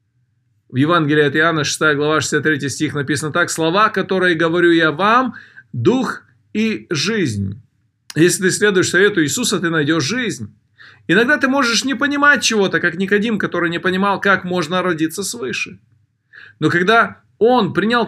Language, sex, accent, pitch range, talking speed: Russian, male, native, 140-225 Hz, 150 wpm